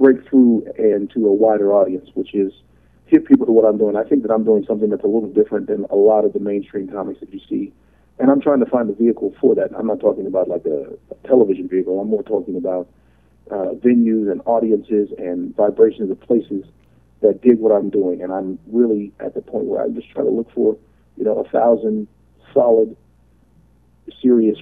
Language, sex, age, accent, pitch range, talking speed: English, male, 40-59, American, 100-135 Hz, 215 wpm